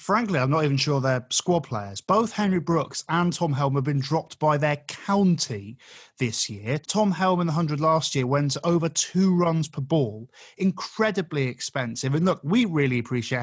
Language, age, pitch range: English, 20-39, 140-190 Hz